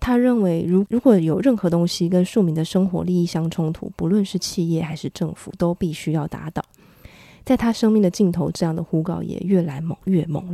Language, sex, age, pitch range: Chinese, female, 20-39, 170-200 Hz